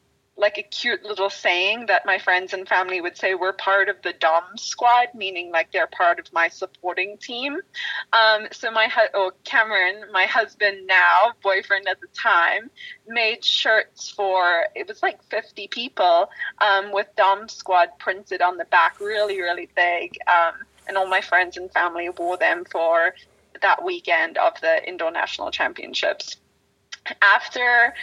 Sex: female